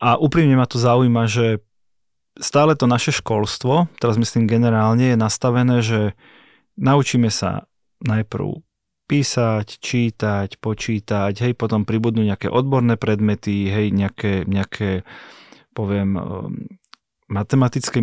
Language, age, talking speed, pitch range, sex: Slovak, 30-49, 110 wpm, 110-135 Hz, male